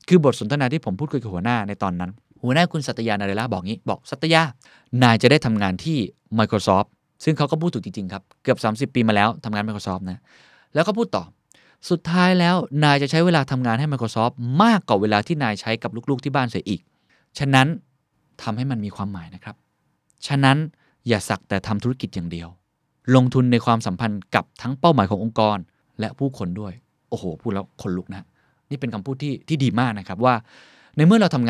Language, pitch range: Thai, 105-145 Hz